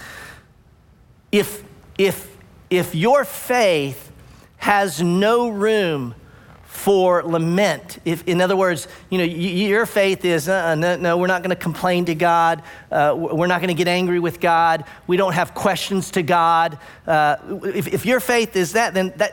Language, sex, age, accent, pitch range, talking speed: English, male, 40-59, American, 145-190 Hz, 165 wpm